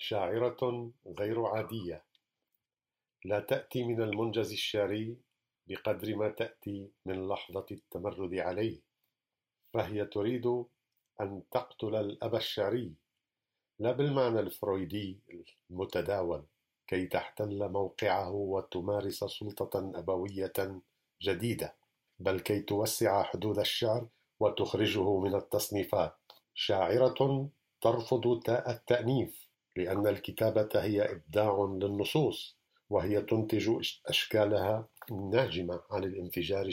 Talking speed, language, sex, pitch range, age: 90 wpm, English, male, 100-120 Hz, 50-69